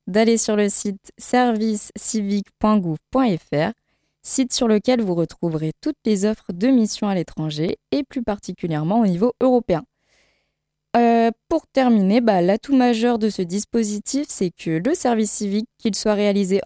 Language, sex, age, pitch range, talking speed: French, female, 20-39, 180-235 Hz, 145 wpm